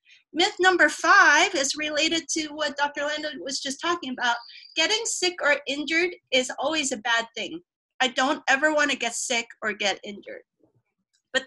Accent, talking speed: American, 165 wpm